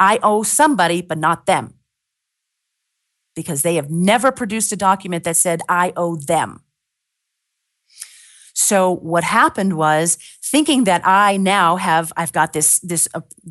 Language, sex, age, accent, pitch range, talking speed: English, female, 40-59, American, 165-200 Hz, 140 wpm